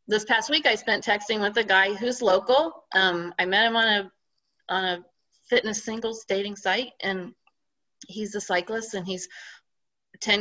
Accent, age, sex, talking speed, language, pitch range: American, 30-49, female, 175 wpm, English, 175-250 Hz